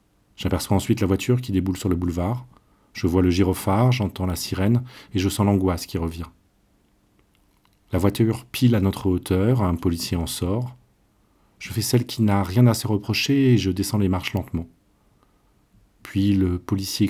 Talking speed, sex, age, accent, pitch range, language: 175 wpm, male, 40-59, French, 90-105 Hz, French